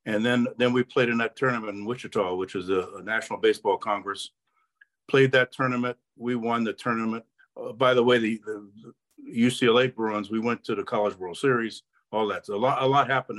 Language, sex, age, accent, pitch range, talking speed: English, male, 50-69, American, 105-125 Hz, 210 wpm